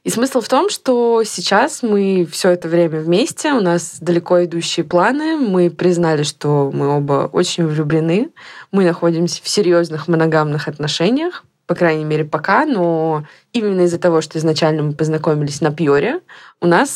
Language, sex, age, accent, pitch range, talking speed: Russian, female, 20-39, native, 155-185 Hz, 160 wpm